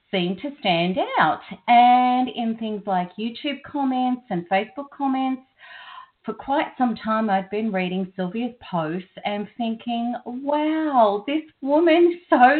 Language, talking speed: English, 135 wpm